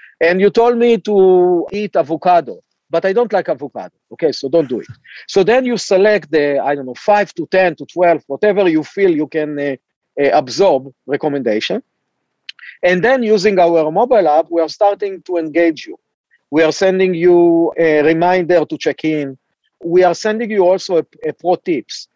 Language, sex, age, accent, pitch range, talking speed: English, male, 50-69, Israeli, 155-190 Hz, 185 wpm